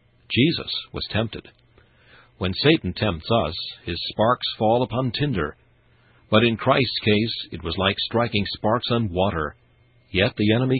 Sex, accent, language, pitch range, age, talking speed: male, American, English, 90-120 Hz, 50-69, 145 wpm